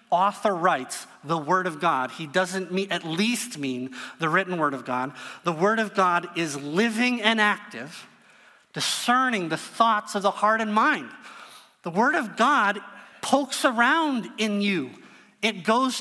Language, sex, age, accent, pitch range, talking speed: English, male, 30-49, American, 175-230 Hz, 155 wpm